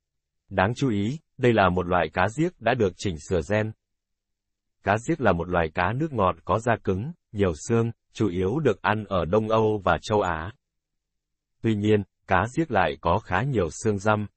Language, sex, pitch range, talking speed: Vietnamese, male, 90-115 Hz, 195 wpm